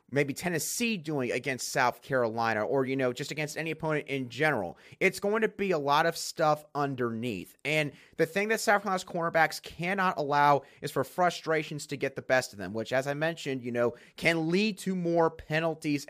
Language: English